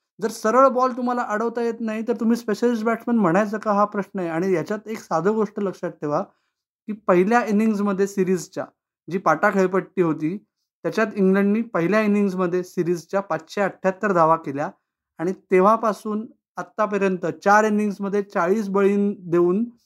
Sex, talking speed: male, 145 wpm